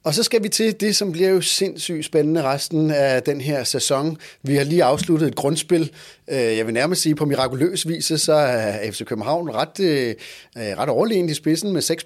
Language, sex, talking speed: Danish, male, 200 wpm